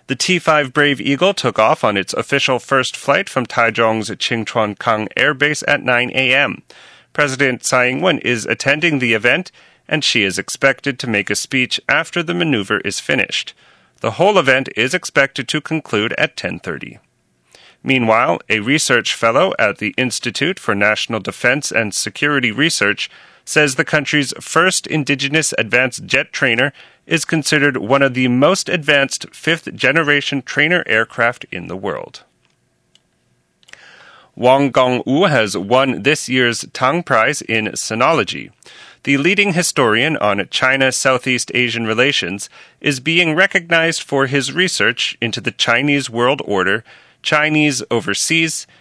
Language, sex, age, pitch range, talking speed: English, male, 40-59, 125-155 Hz, 140 wpm